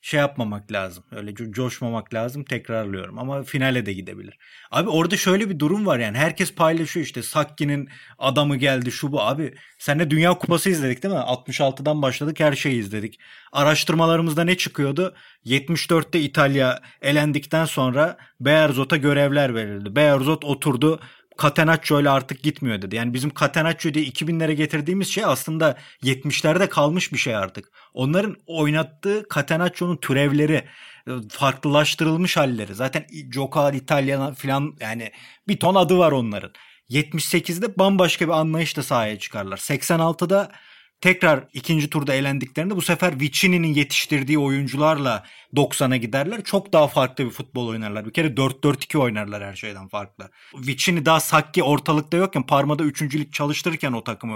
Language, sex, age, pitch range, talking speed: Turkish, male, 30-49, 135-170 Hz, 140 wpm